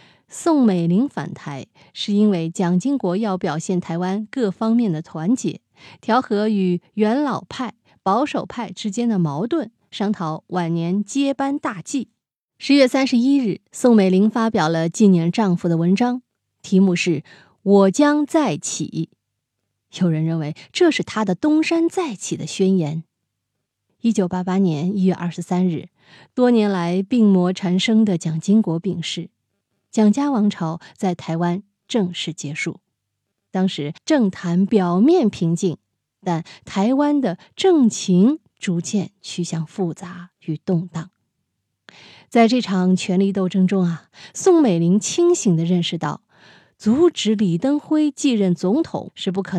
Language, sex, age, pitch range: Chinese, female, 20-39, 175-225 Hz